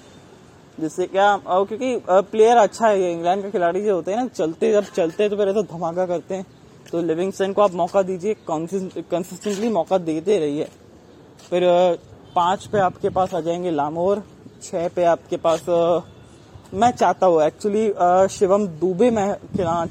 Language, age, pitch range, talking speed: Hindi, 20-39, 160-195 Hz, 160 wpm